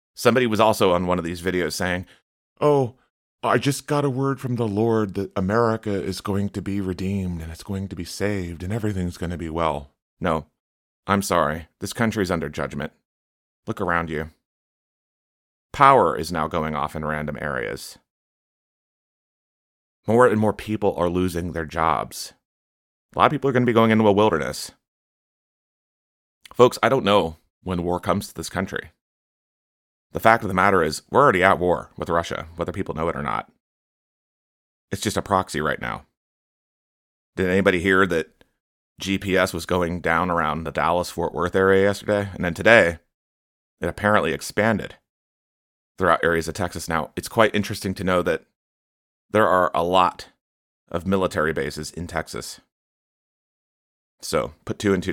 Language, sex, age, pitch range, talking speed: English, male, 30-49, 80-100 Hz, 170 wpm